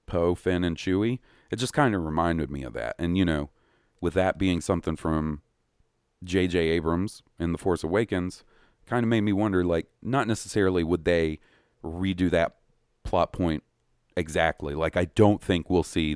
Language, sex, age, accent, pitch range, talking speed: English, male, 40-59, American, 80-105 Hz, 180 wpm